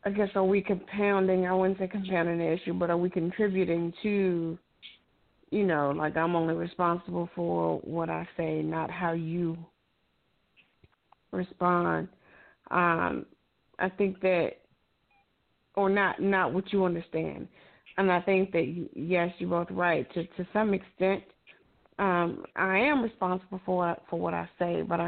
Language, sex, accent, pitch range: English, female, American, 170-195 Hz